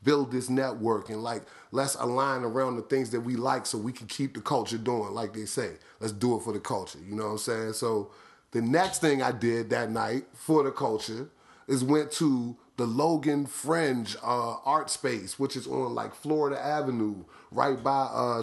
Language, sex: English, male